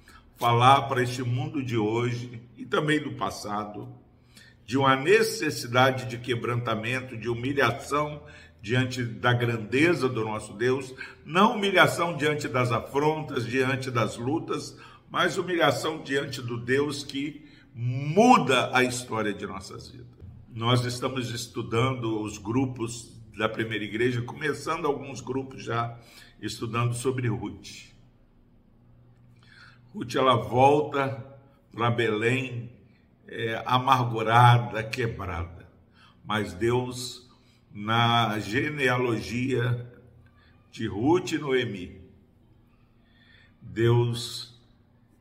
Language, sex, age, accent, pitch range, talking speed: Portuguese, male, 50-69, Brazilian, 110-130 Hz, 100 wpm